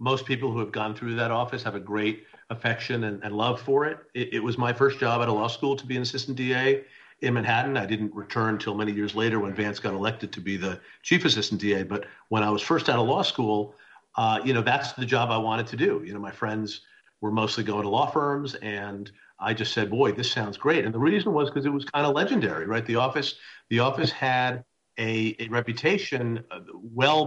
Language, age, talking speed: English, 50-69, 240 wpm